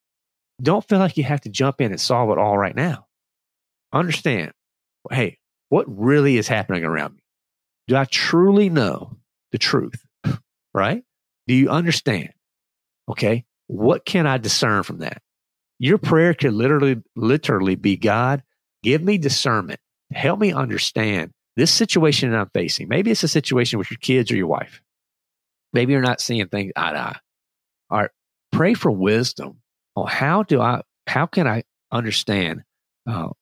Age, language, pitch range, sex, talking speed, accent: 40-59, English, 105-150 Hz, male, 160 wpm, American